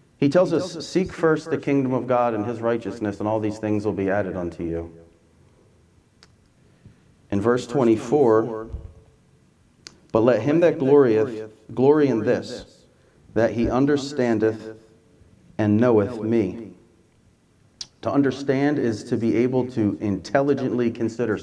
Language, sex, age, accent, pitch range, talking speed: English, male, 40-59, American, 105-130 Hz, 130 wpm